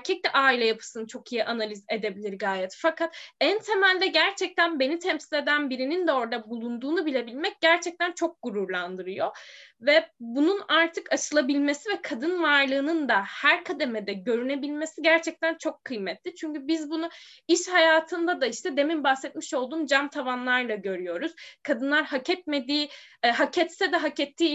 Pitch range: 250-325 Hz